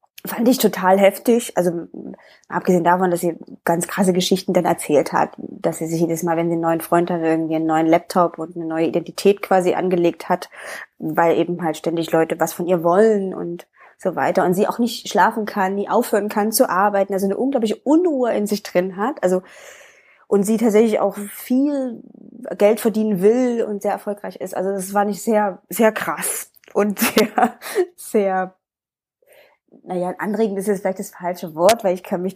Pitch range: 170-210 Hz